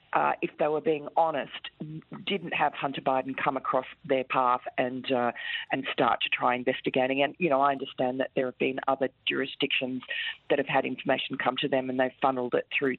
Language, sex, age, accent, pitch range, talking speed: English, female, 40-59, Australian, 130-155 Hz, 205 wpm